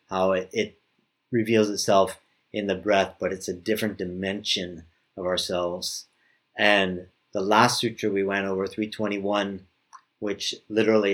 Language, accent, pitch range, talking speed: English, American, 95-115 Hz, 130 wpm